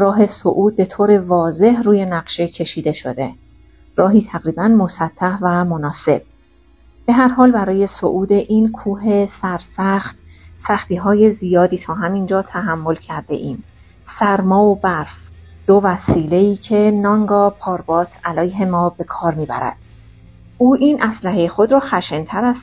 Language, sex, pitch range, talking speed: Persian, female, 170-210 Hz, 135 wpm